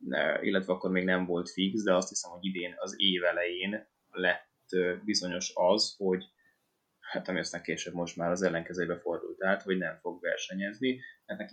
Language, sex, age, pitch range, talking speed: Hungarian, male, 20-39, 90-105 Hz, 165 wpm